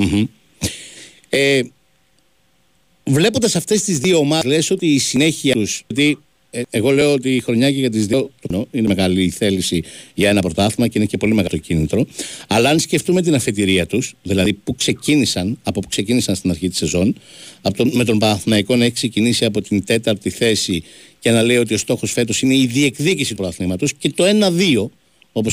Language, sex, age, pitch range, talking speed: Greek, male, 60-79, 105-155 Hz, 180 wpm